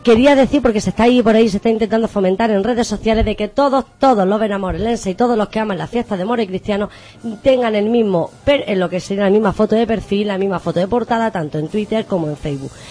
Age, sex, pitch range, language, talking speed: 20-39, female, 175-235 Hz, Spanish, 255 wpm